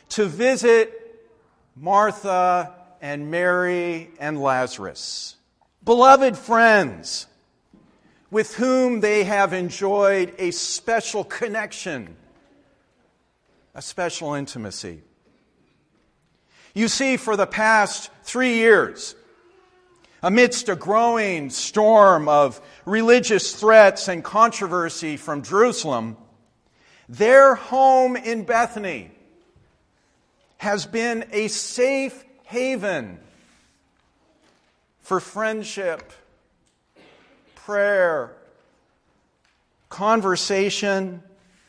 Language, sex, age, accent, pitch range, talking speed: English, male, 50-69, American, 185-235 Hz, 75 wpm